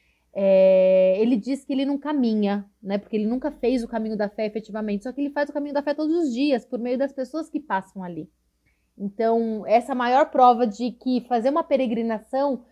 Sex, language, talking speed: female, Portuguese, 205 wpm